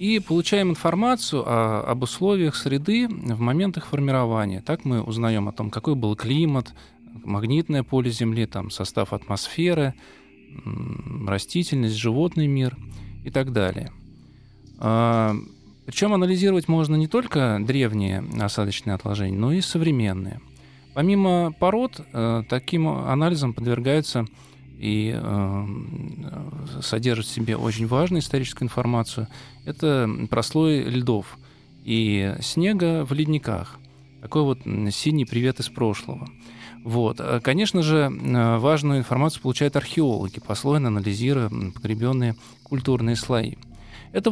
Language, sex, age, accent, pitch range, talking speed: Russian, male, 20-39, native, 115-155 Hz, 110 wpm